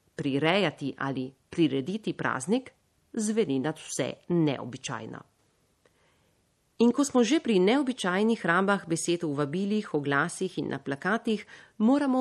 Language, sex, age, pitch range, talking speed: Italian, female, 40-59, 160-230 Hz, 115 wpm